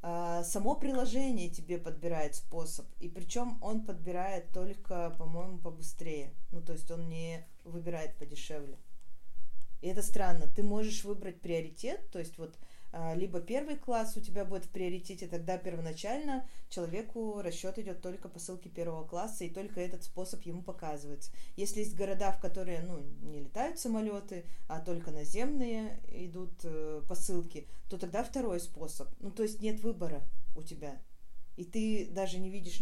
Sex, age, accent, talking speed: female, 20-39, native, 150 wpm